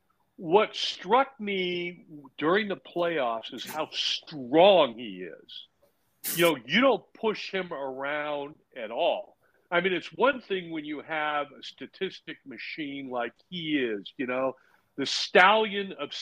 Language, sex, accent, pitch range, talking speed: English, male, American, 150-220 Hz, 145 wpm